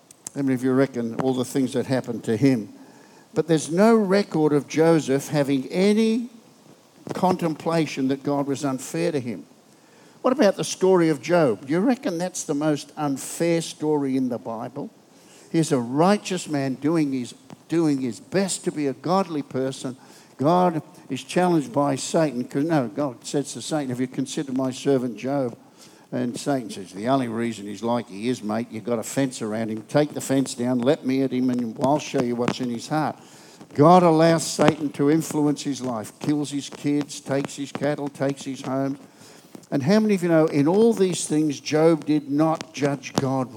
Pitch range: 130-160 Hz